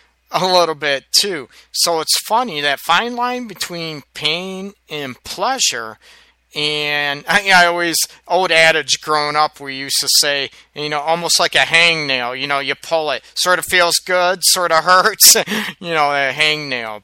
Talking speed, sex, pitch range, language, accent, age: 165 wpm, male, 145-180 Hz, English, American, 40-59